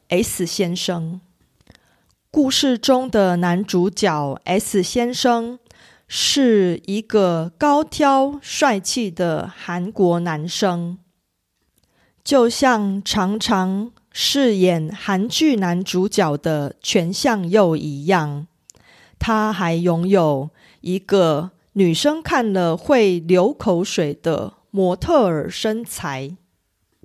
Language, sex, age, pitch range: Korean, female, 30-49, 175-245 Hz